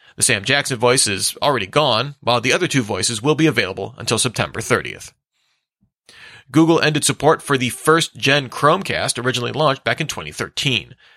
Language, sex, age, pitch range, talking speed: English, male, 40-59, 115-150 Hz, 165 wpm